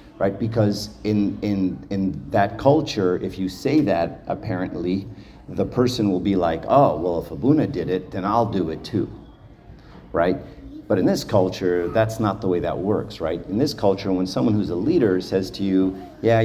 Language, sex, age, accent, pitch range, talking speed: English, male, 50-69, American, 95-115 Hz, 190 wpm